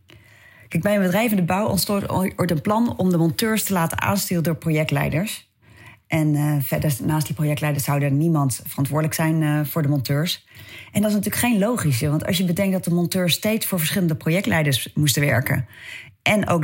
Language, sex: Dutch, female